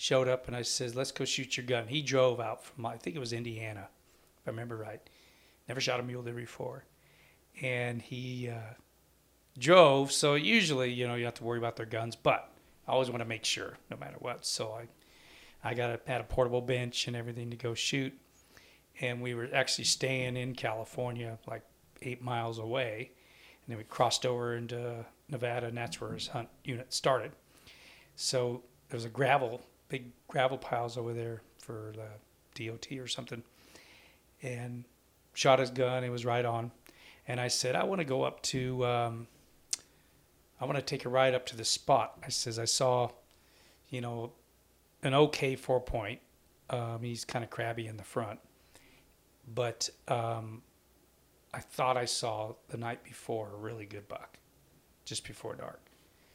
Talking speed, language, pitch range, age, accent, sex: 180 wpm, English, 115-125 Hz, 40-59, American, male